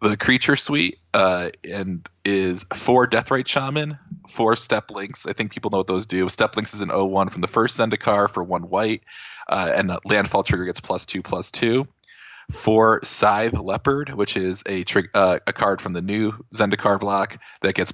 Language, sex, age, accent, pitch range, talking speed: English, male, 20-39, American, 95-110 Hz, 185 wpm